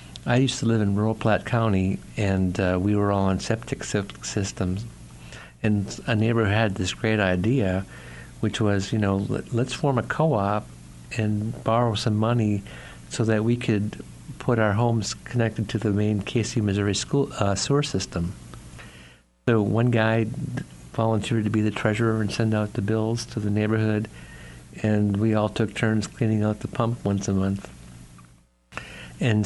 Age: 60-79